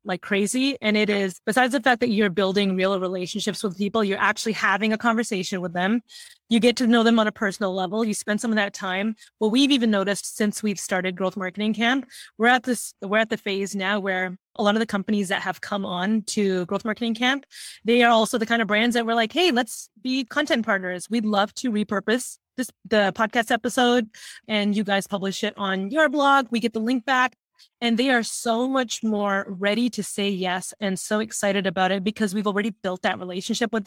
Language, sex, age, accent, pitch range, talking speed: English, female, 20-39, American, 200-235 Hz, 225 wpm